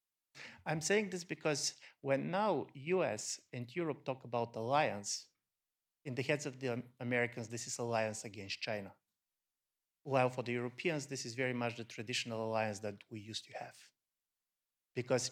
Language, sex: English, male